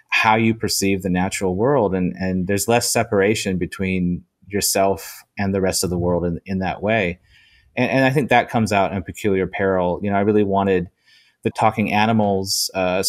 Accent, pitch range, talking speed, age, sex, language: American, 90-105 Hz, 195 wpm, 30-49, male, English